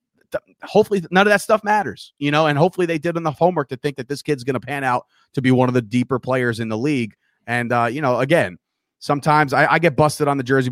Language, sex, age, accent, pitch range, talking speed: English, male, 30-49, American, 115-140 Hz, 260 wpm